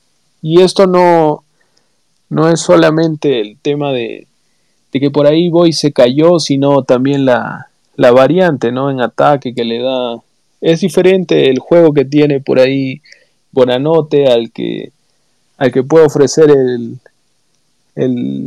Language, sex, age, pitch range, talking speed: Spanish, male, 30-49, 130-160 Hz, 145 wpm